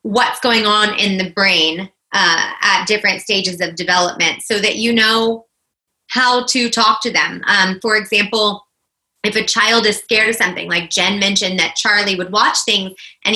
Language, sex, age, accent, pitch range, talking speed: English, female, 20-39, American, 180-220 Hz, 180 wpm